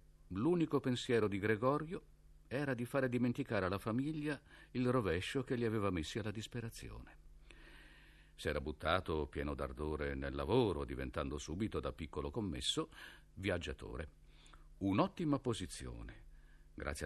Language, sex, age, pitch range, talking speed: Italian, male, 50-69, 75-110 Hz, 120 wpm